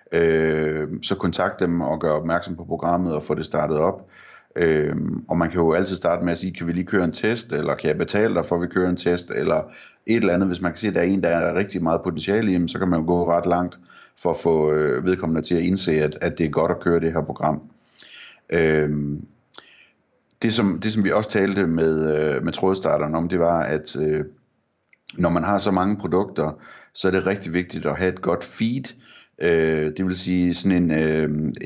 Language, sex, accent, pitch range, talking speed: Danish, male, native, 80-95 Hz, 225 wpm